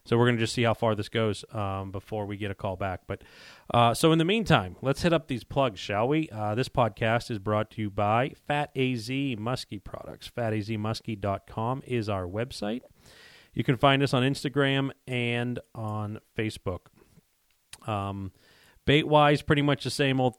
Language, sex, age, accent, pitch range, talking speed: English, male, 30-49, American, 105-130 Hz, 190 wpm